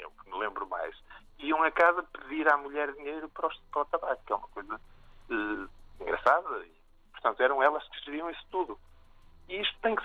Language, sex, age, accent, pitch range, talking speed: Portuguese, male, 50-69, Brazilian, 120-185 Hz, 185 wpm